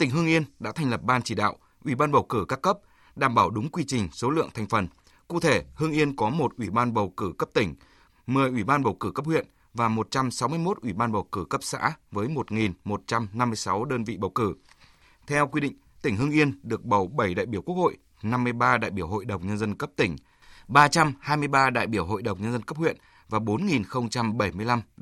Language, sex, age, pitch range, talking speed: Vietnamese, male, 20-39, 105-135 Hz, 215 wpm